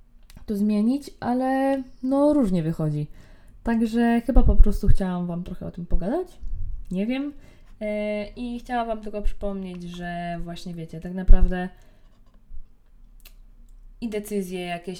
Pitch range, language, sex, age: 170-215 Hz, Polish, female, 20-39